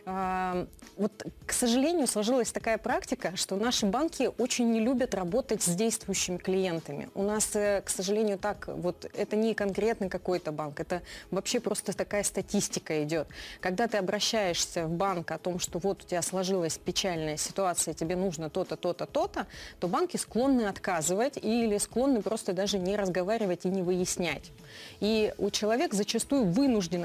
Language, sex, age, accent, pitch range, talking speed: Russian, female, 30-49, native, 180-225 Hz, 155 wpm